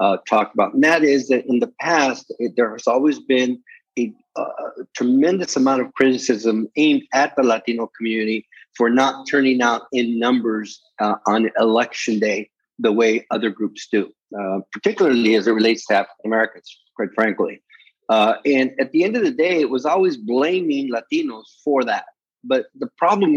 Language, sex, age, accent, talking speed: English, male, 50-69, American, 175 wpm